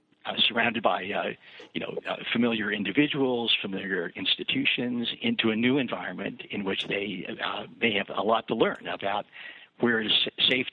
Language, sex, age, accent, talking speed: English, male, 60-79, American, 160 wpm